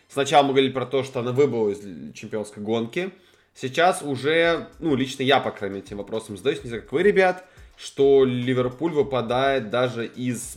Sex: male